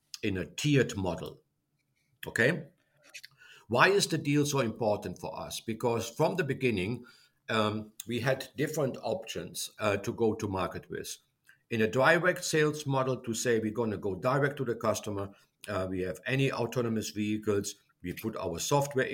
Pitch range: 105-135 Hz